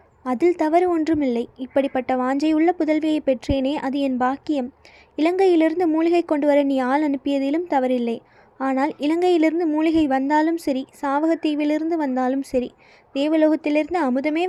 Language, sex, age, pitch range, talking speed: Tamil, female, 20-39, 270-315 Hz, 115 wpm